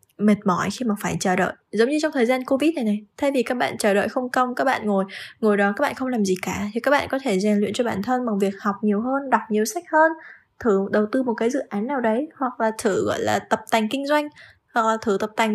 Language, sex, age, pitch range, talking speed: Vietnamese, female, 10-29, 195-245 Hz, 285 wpm